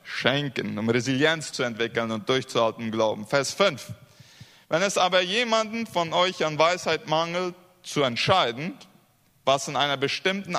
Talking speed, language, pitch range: 140 wpm, Spanish, 140-180 Hz